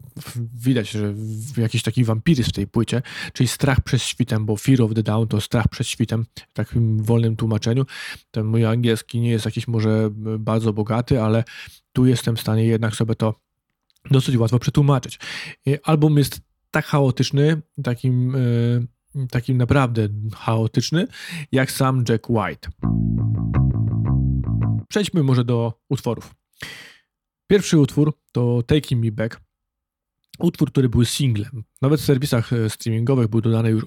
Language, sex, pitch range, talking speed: Polish, male, 115-140 Hz, 140 wpm